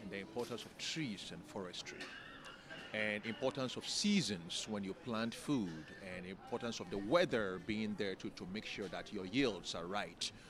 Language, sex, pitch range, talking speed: English, male, 115-165 Hz, 175 wpm